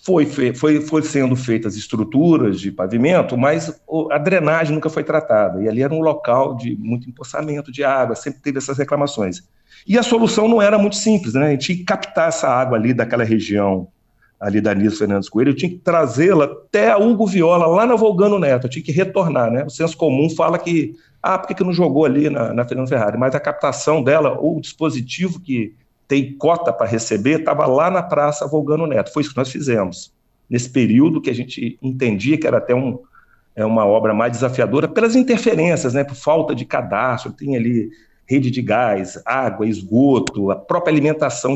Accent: Brazilian